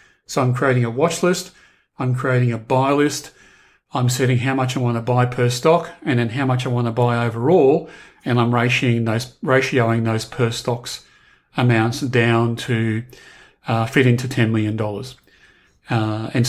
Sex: male